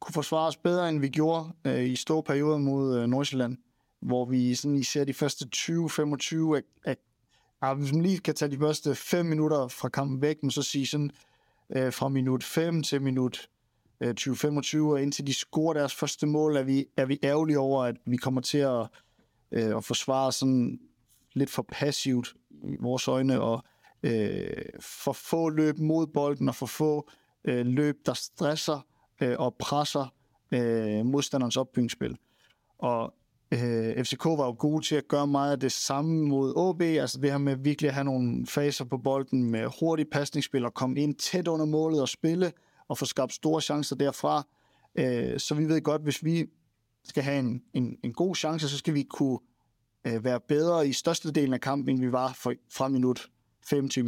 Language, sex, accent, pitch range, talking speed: Danish, male, native, 125-150 Hz, 190 wpm